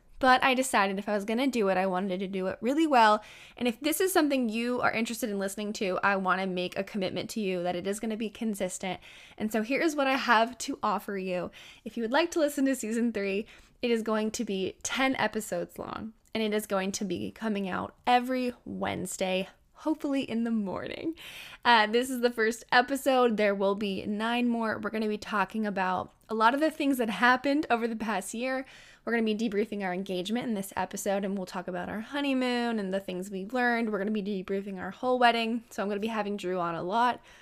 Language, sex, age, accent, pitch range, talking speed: English, female, 10-29, American, 200-250 Hz, 240 wpm